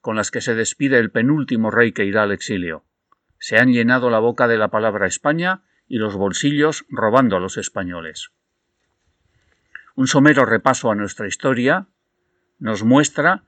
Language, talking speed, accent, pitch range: Spanish, 160 wpm, Spanish, 105-145 Hz